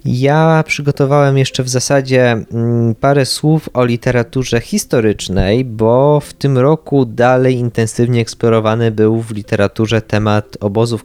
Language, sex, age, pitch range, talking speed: Polish, male, 20-39, 105-130 Hz, 120 wpm